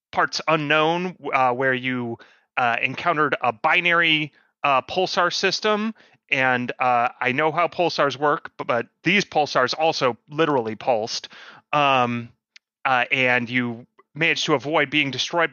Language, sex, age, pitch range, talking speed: English, male, 30-49, 130-180 Hz, 135 wpm